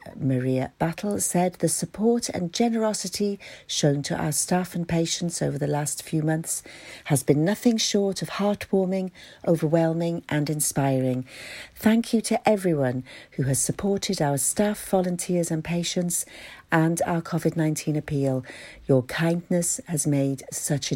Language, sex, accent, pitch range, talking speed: English, female, British, 145-180 Hz, 140 wpm